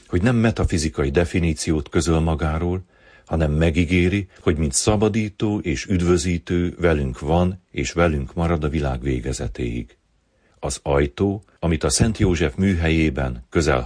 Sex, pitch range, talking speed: male, 75-90 Hz, 125 wpm